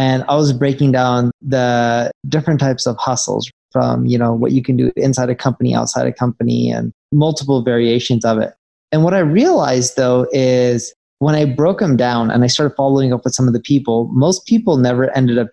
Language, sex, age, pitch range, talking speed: English, male, 20-39, 125-150 Hz, 210 wpm